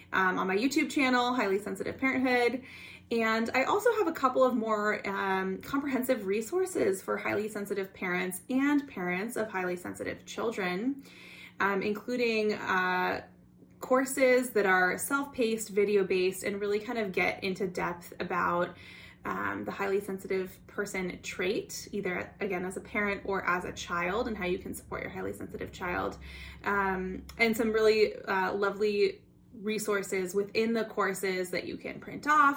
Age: 20-39